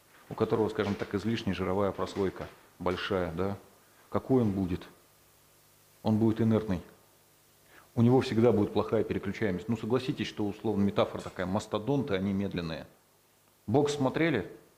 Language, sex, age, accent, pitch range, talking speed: Russian, male, 40-59, native, 100-130 Hz, 130 wpm